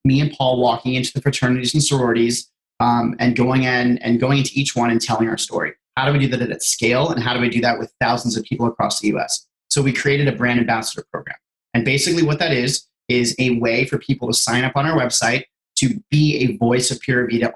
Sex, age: male, 30-49